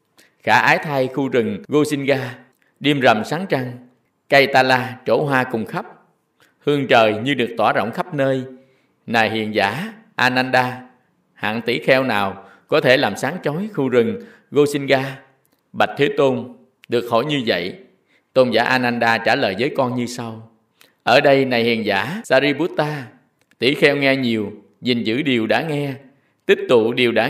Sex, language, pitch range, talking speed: male, Vietnamese, 120-150 Hz, 165 wpm